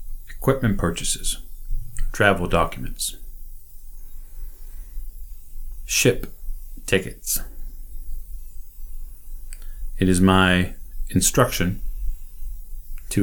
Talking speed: 50 wpm